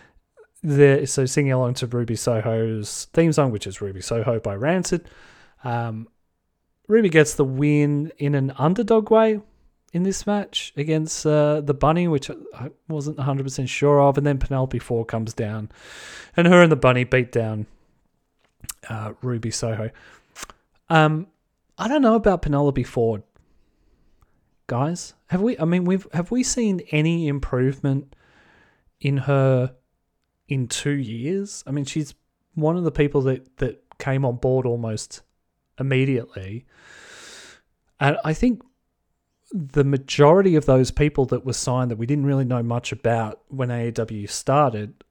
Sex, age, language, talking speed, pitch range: male, 30-49, English, 150 wpm, 115-150 Hz